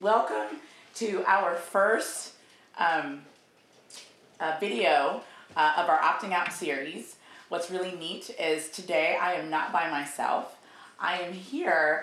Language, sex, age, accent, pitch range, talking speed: English, female, 30-49, American, 160-190 Hz, 130 wpm